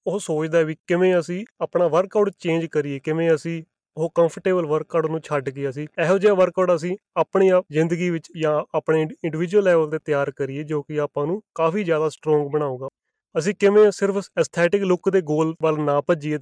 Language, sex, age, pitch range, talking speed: Punjabi, male, 30-49, 150-180 Hz, 185 wpm